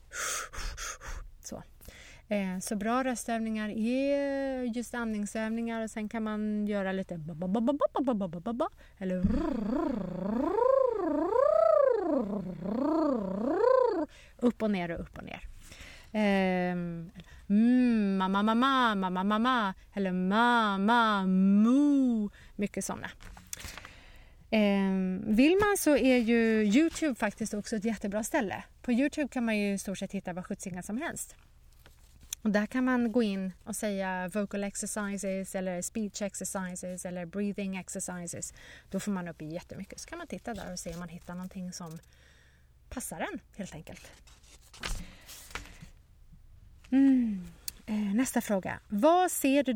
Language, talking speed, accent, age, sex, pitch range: Swedish, 115 wpm, native, 30-49, female, 185-250 Hz